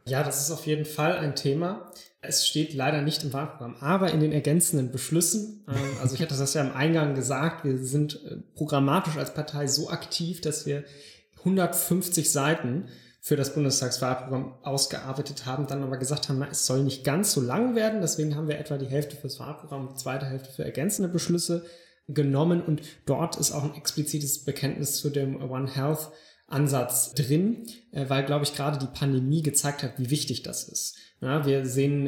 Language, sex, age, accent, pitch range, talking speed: German, male, 20-39, German, 135-155 Hz, 180 wpm